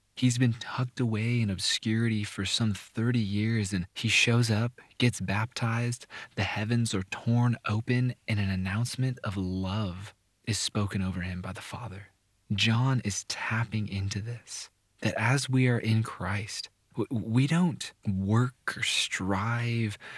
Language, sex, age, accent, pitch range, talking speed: English, male, 20-39, American, 100-115 Hz, 145 wpm